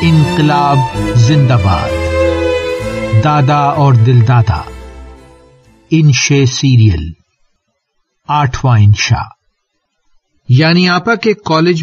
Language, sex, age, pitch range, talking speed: English, male, 50-69, 120-155 Hz, 65 wpm